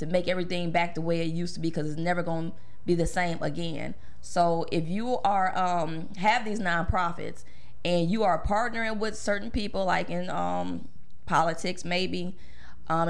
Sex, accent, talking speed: female, American, 185 wpm